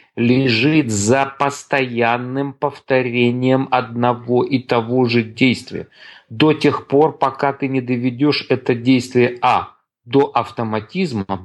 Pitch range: 115-140 Hz